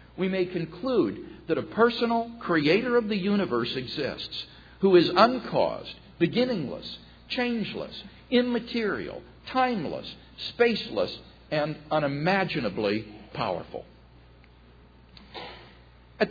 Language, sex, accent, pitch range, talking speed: English, male, American, 135-205 Hz, 85 wpm